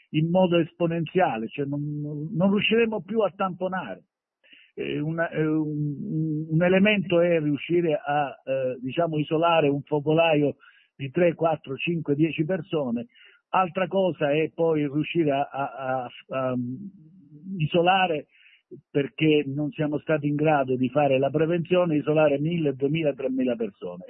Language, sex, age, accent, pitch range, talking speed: Italian, male, 50-69, native, 140-170 Hz, 135 wpm